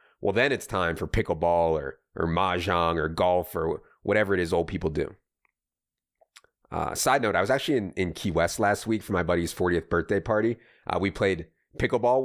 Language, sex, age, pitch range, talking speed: English, male, 30-49, 90-115 Hz, 195 wpm